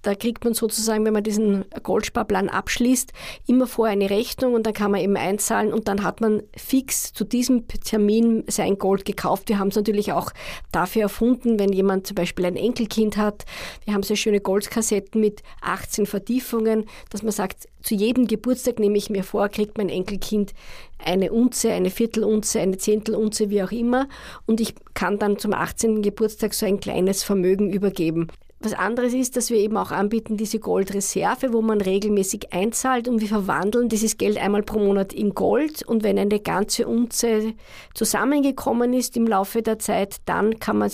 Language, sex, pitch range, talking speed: German, female, 200-225 Hz, 180 wpm